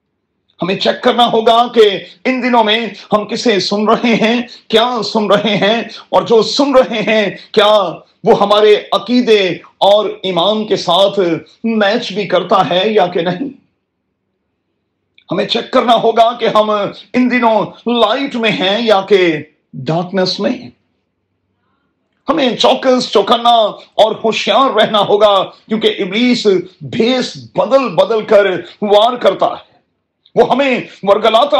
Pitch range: 195-235 Hz